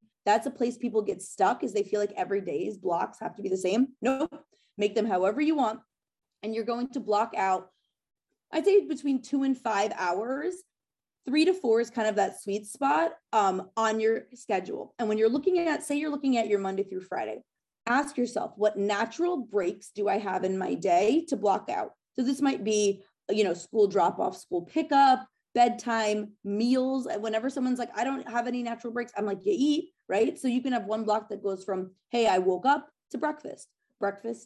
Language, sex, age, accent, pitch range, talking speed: English, female, 20-39, American, 200-275 Hz, 205 wpm